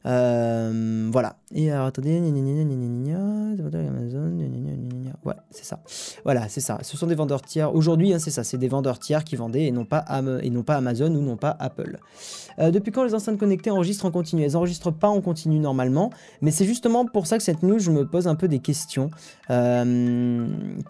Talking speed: 195 wpm